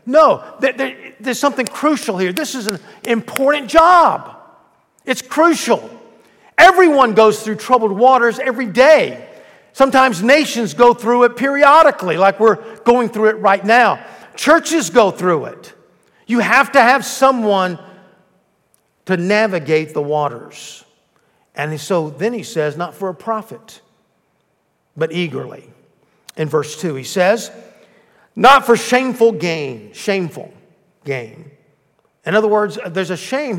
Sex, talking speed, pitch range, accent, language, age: male, 130 wpm, 170-245 Hz, American, English, 50-69